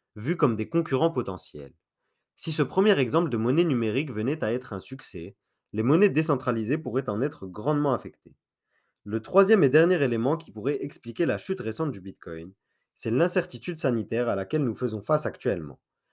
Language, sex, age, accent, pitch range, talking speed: French, male, 30-49, French, 110-155 Hz, 175 wpm